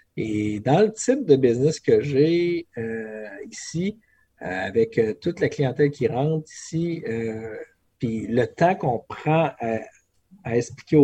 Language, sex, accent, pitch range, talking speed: French, male, Canadian, 115-145 Hz, 140 wpm